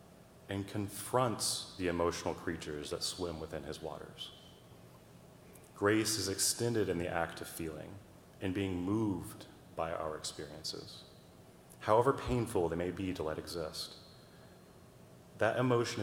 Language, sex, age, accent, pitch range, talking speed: English, male, 30-49, American, 85-110 Hz, 125 wpm